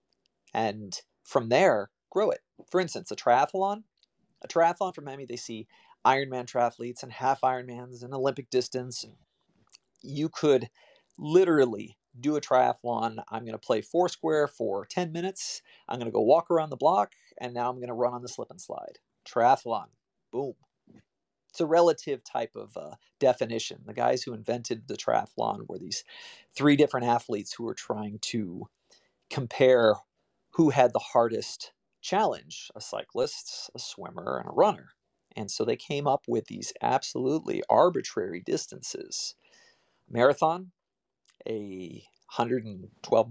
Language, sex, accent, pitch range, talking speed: English, male, American, 120-165 Hz, 150 wpm